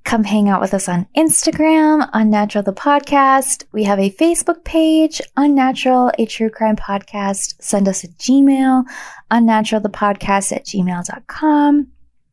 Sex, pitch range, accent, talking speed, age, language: female, 190-260 Hz, American, 130 wpm, 20-39, English